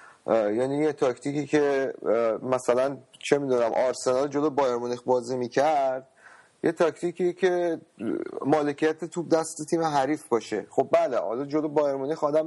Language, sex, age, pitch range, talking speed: Persian, male, 30-49, 125-155 Hz, 140 wpm